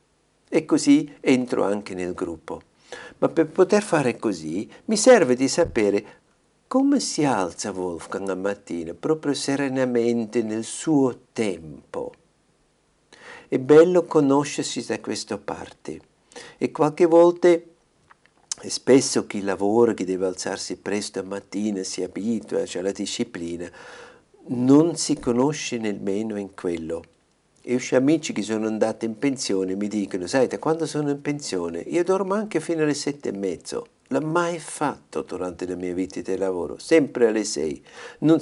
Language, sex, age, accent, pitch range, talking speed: Italian, male, 50-69, native, 100-155 Hz, 145 wpm